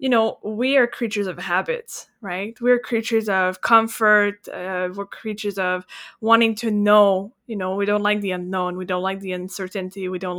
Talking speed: 190 wpm